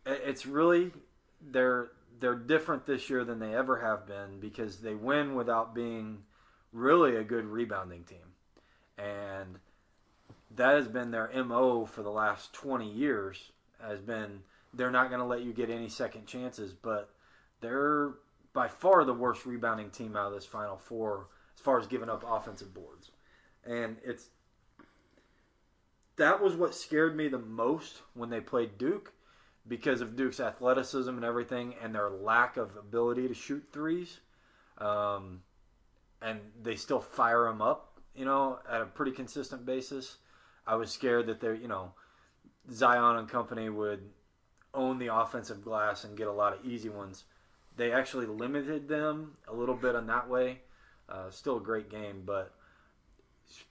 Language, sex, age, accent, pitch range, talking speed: English, male, 20-39, American, 105-130 Hz, 160 wpm